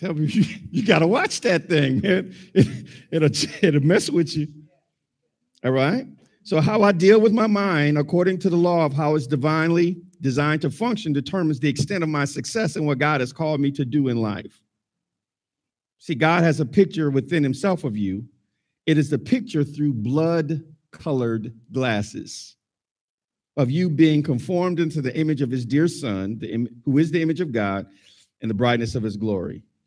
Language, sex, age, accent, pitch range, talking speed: English, male, 50-69, American, 130-175 Hz, 185 wpm